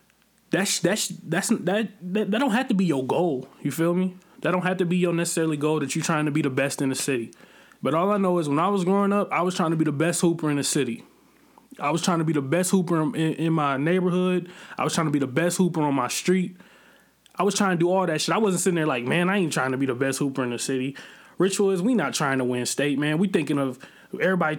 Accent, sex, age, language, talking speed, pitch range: American, male, 20-39, English, 285 wpm, 155-195 Hz